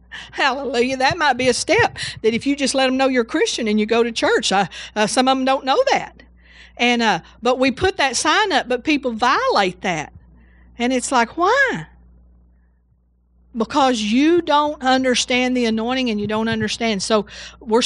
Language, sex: English, female